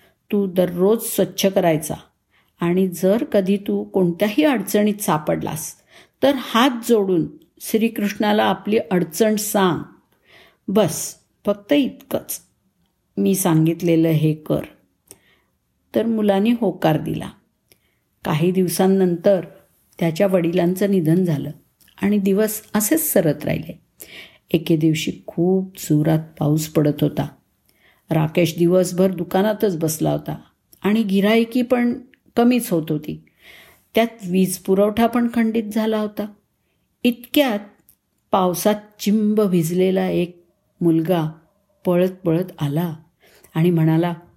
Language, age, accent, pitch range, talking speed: Marathi, 50-69, native, 170-215 Hz, 105 wpm